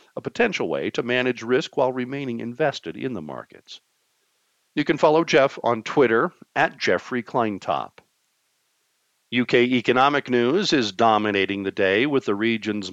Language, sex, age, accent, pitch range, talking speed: English, male, 50-69, American, 105-130 Hz, 140 wpm